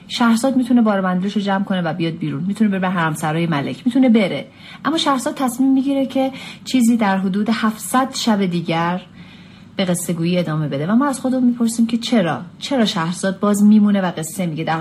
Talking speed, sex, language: 180 wpm, female, Persian